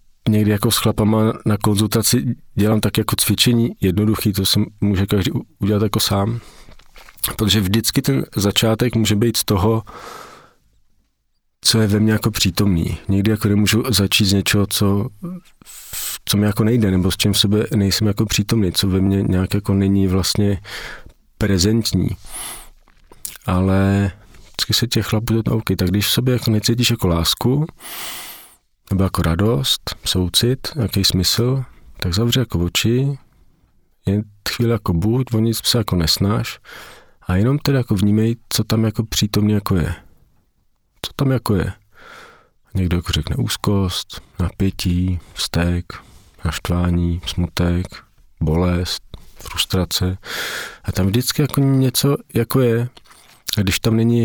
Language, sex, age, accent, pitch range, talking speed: Czech, male, 40-59, native, 95-115 Hz, 140 wpm